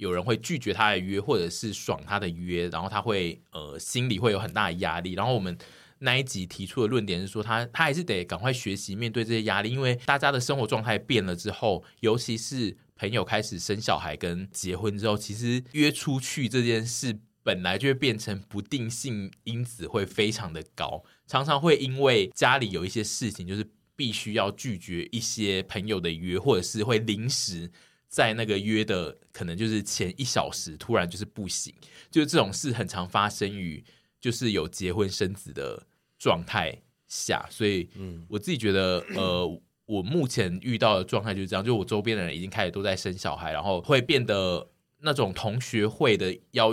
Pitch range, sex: 95-120 Hz, male